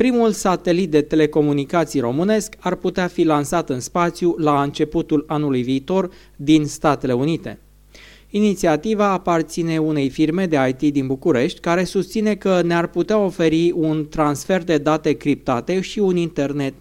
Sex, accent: male, native